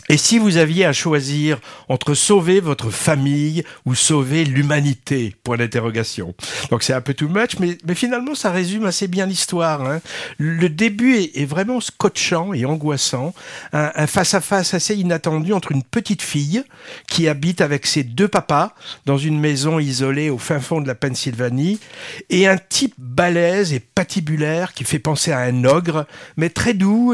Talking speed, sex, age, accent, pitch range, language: 175 wpm, male, 50-69, French, 145-190 Hz, French